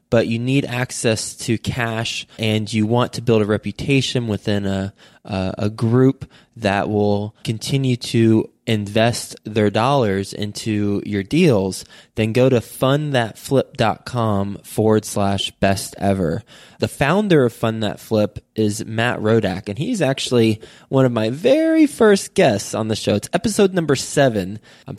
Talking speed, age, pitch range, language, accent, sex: 150 wpm, 20-39, 100-125 Hz, English, American, male